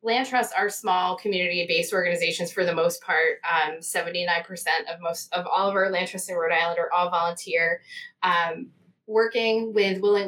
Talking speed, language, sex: 175 wpm, English, female